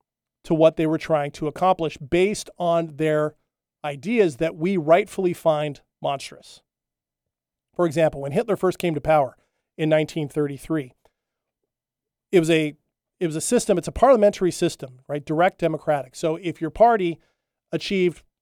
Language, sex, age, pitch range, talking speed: English, male, 40-59, 150-180 Hz, 145 wpm